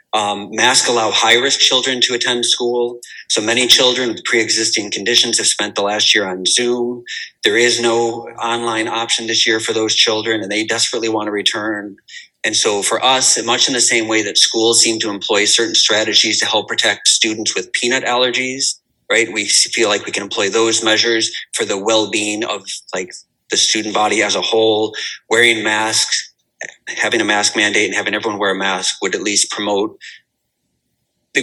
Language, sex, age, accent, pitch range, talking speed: English, male, 30-49, American, 110-120 Hz, 185 wpm